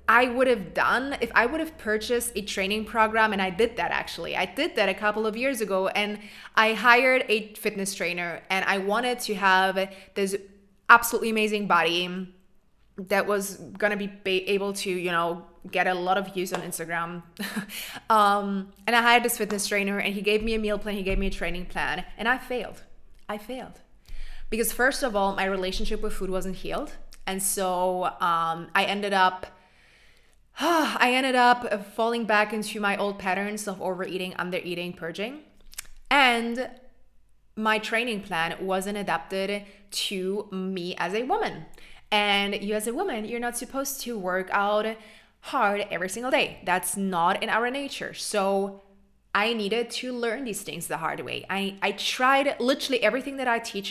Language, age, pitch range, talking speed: English, 20-39, 190-225 Hz, 175 wpm